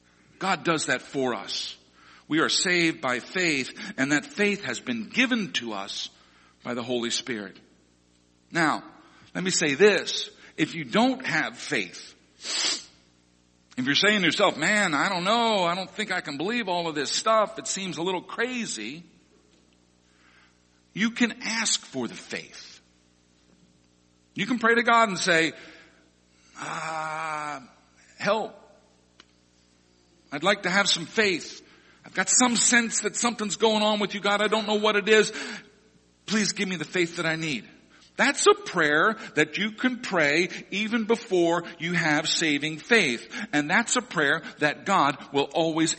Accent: American